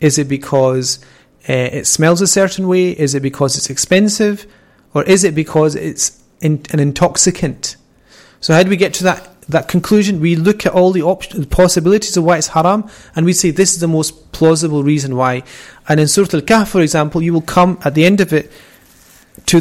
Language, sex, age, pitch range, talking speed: English, male, 30-49, 140-175 Hz, 210 wpm